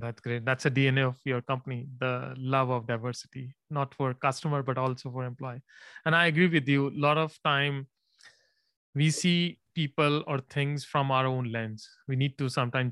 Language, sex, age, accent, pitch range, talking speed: English, male, 30-49, Indian, 125-145 Hz, 190 wpm